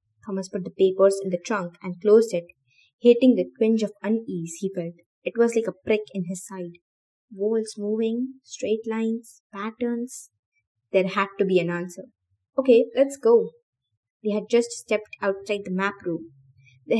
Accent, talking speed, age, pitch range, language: Indian, 170 wpm, 20-39, 175-230 Hz, English